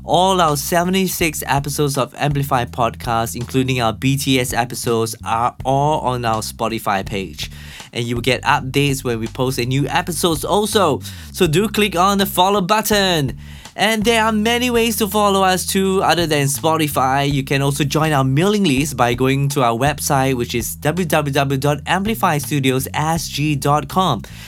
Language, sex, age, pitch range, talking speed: English, male, 20-39, 130-180 Hz, 155 wpm